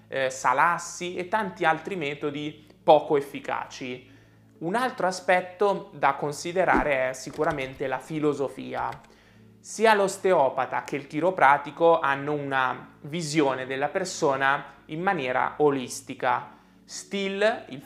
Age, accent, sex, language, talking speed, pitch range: 20-39, native, male, Italian, 105 wpm, 135-180 Hz